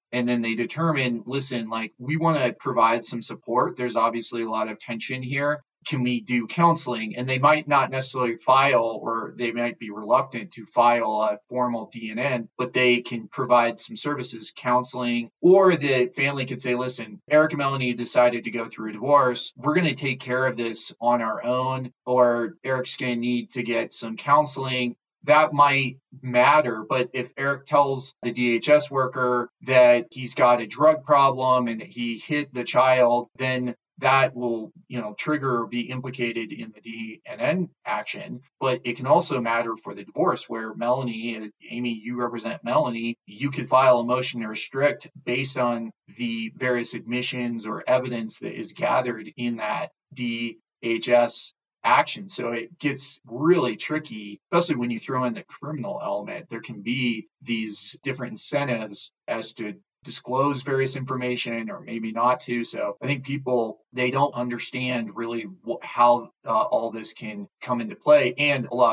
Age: 30-49